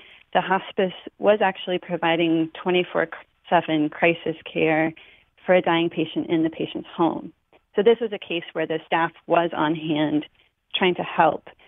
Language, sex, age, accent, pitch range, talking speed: English, female, 30-49, American, 165-185 Hz, 155 wpm